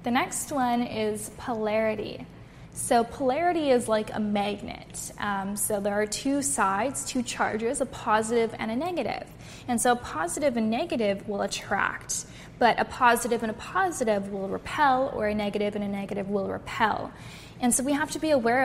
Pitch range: 215-255 Hz